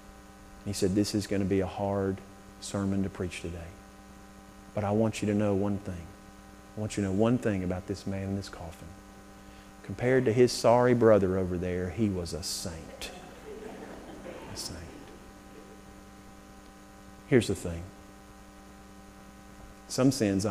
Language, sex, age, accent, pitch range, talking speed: English, male, 40-59, American, 100-110 Hz, 150 wpm